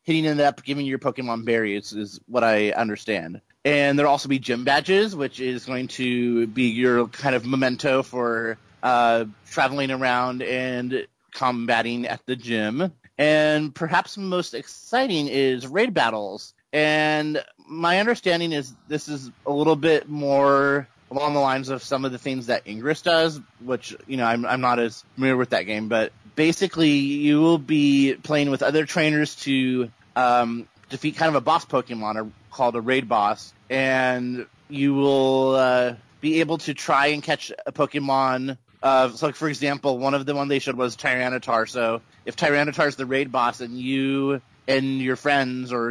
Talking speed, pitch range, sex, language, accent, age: 175 wpm, 120-145 Hz, male, English, American, 30-49